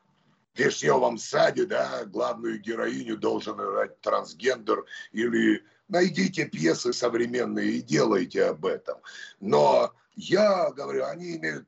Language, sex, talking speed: Russian, male, 115 wpm